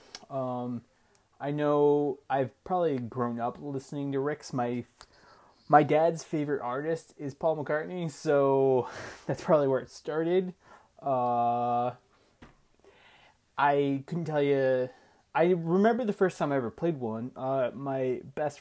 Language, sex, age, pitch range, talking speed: English, male, 20-39, 120-150 Hz, 130 wpm